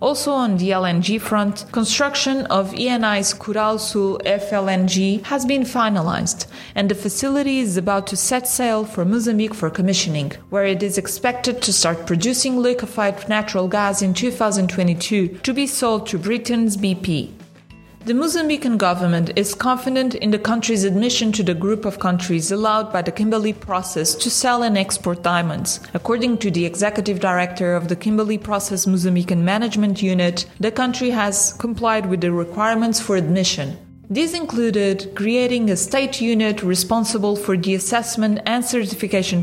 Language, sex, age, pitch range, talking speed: English, female, 30-49, 185-230 Hz, 150 wpm